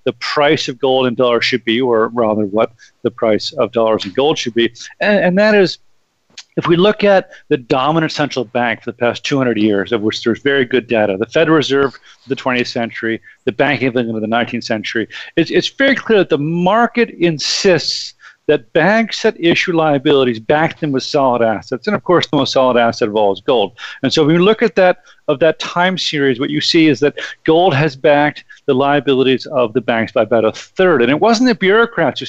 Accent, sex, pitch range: American, male, 120-165 Hz